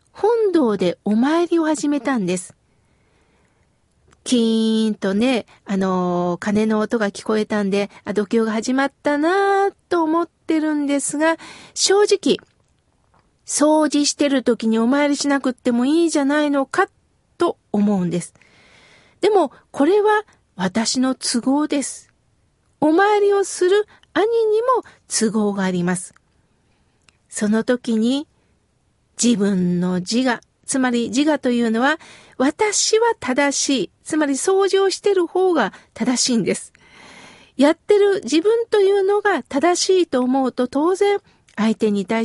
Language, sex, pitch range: Japanese, female, 230-335 Hz